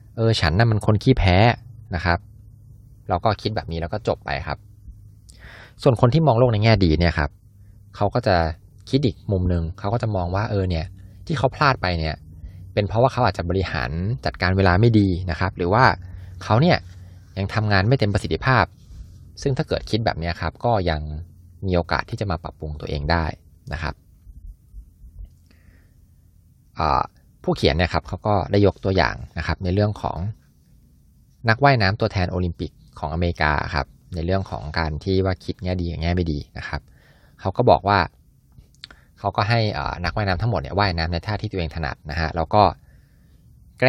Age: 20-39